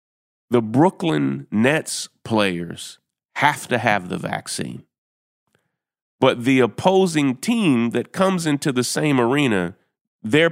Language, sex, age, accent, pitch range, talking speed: English, male, 40-59, American, 120-170 Hz, 115 wpm